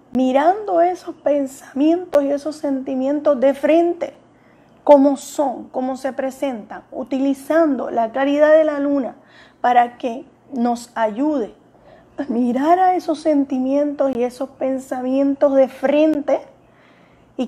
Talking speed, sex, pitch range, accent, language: 115 wpm, female, 235-290 Hz, American, Spanish